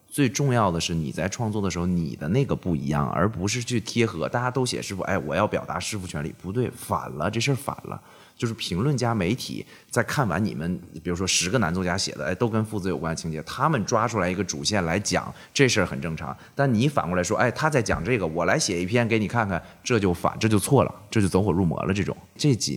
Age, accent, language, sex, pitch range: 20-39, native, Chinese, male, 80-115 Hz